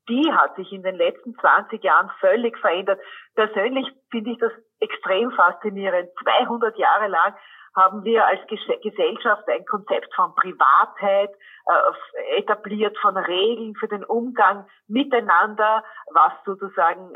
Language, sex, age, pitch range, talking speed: German, female, 40-59, 195-260 Hz, 130 wpm